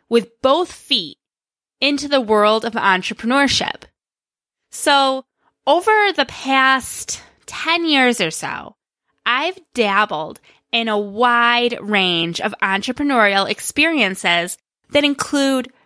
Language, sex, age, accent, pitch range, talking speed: English, female, 10-29, American, 210-275 Hz, 100 wpm